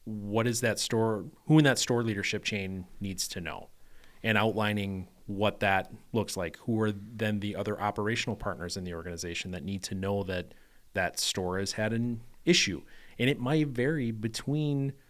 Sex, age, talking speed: male, 30-49, 180 wpm